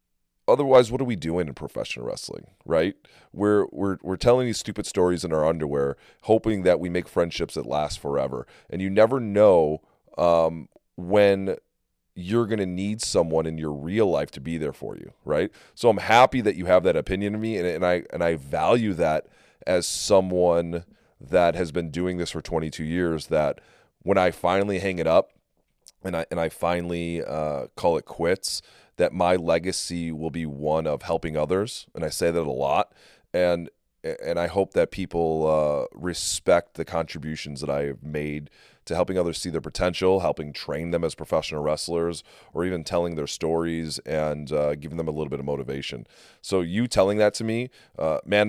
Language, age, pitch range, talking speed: English, 30-49, 80-95 Hz, 190 wpm